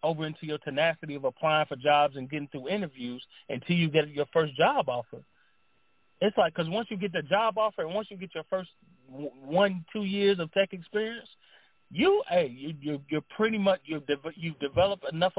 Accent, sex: American, male